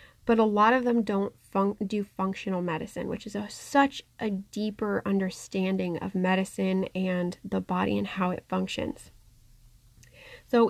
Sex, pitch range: female, 190-230 Hz